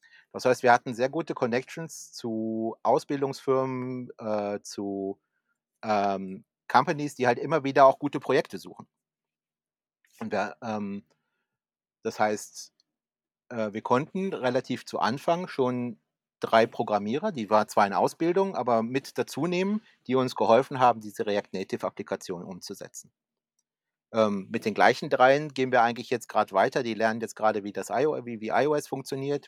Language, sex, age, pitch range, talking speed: German, male, 30-49, 110-135 Hz, 145 wpm